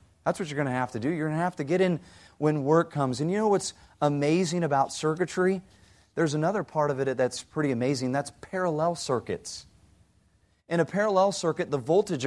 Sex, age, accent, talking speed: male, 30-49, American, 205 wpm